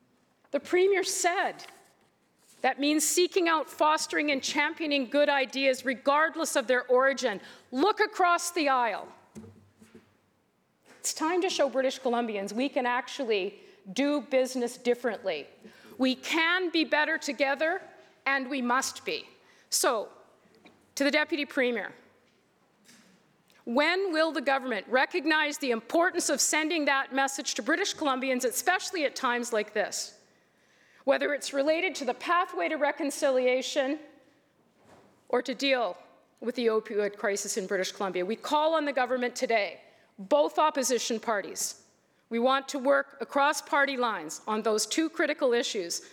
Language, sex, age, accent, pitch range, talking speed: English, female, 50-69, American, 240-310 Hz, 135 wpm